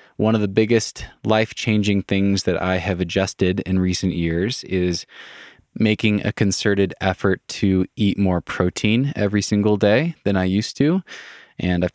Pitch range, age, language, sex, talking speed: 85-100 Hz, 20-39, English, male, 155 wpm